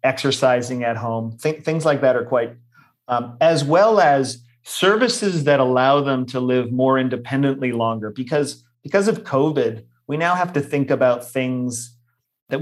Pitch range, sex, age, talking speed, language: 125-145 Hz, male, 30-49, 155 wpm, English